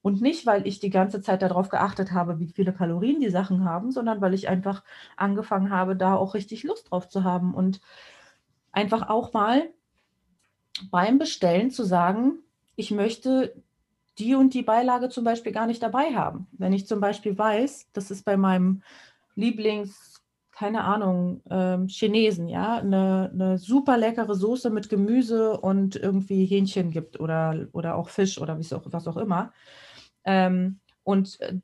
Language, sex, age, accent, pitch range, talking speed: German, female, 30-49, German, 185-220 Hz, 160 wpm